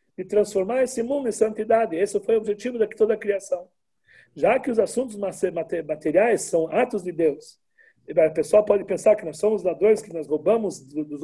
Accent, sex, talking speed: Brazilian, male, 185 wpm